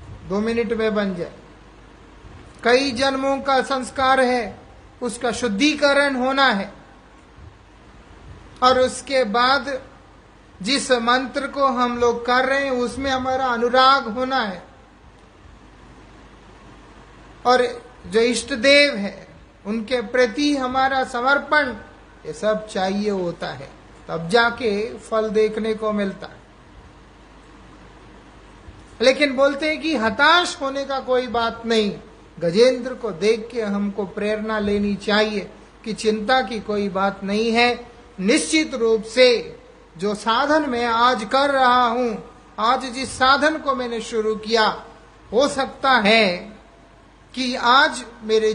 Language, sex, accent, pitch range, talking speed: English, male, Indian, 215-265 Hz, 120 wpm